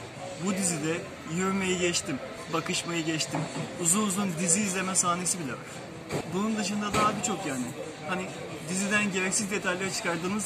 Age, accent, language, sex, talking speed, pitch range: 30-49, native, Turkish, male, 130 wpm, 165-195 Hz